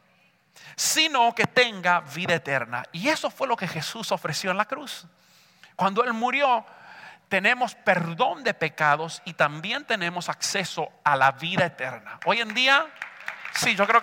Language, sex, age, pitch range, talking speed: English, male, 40-59, 150-205 Hz, 155 wpm